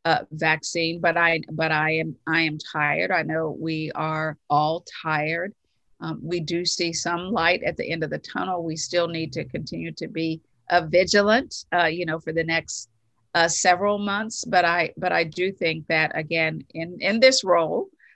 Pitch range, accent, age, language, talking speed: 160-180 Hz, American, 40-59, English, 190 wpm